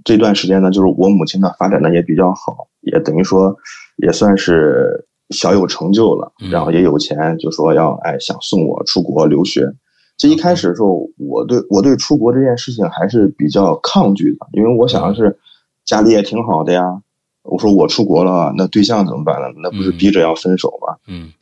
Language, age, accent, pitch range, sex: Chinese, 20-39, native, 95-110 Hz, male